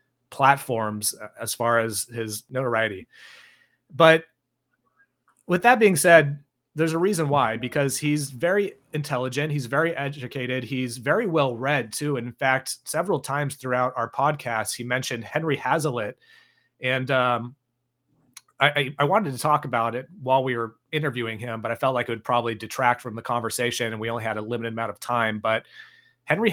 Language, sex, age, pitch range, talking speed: English, male, 30-49, 115-145 Hz, 165 wpm